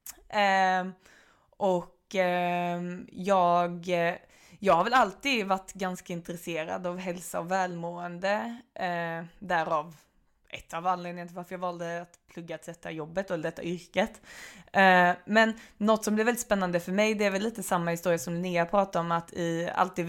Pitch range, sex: 170-200 Hz, female